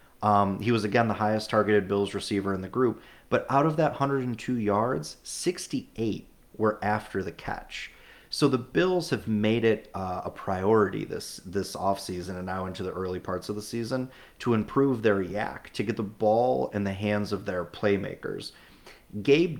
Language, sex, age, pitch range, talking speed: English, male, 30-49, 95-115 Hz, 180 wpm